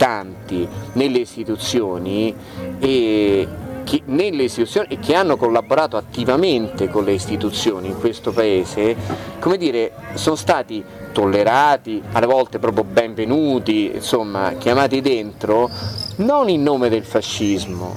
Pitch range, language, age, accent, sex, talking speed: 100-125 Hz, Italian, 30-49, native, male, 115 wpm